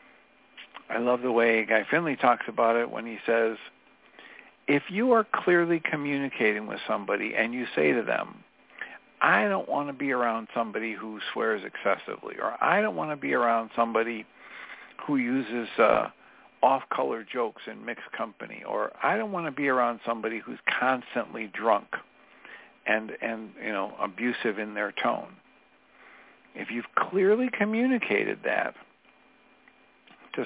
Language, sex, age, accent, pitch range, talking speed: English, male, 60-79, American, 115-165 Hz, 150 wpm